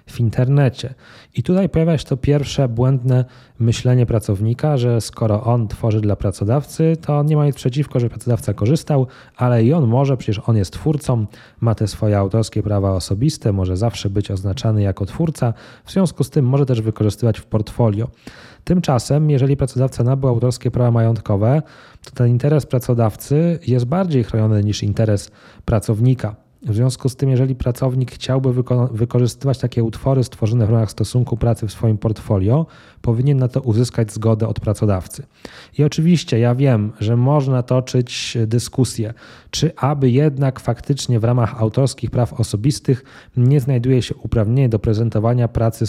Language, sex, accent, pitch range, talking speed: Polish, male, native, 110-130 Hz, 155 wpm